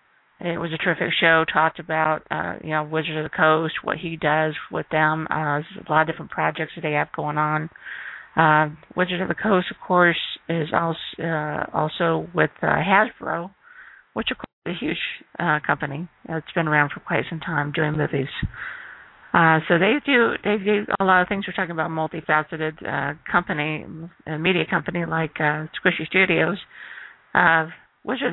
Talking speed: 185 wpm